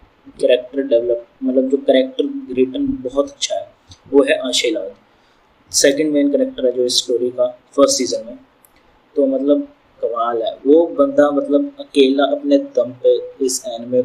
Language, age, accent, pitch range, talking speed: Hindi, 20-39, native, 120-155 Hz, 155 wpm